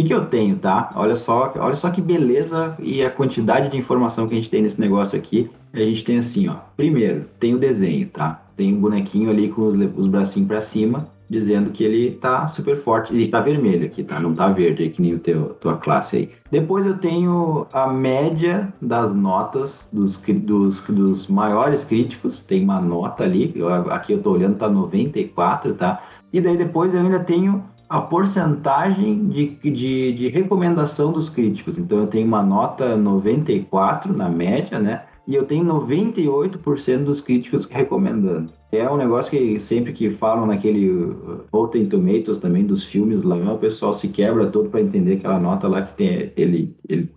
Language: Portuguese